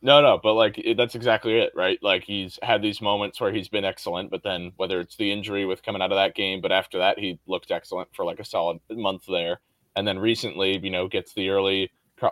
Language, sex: English, male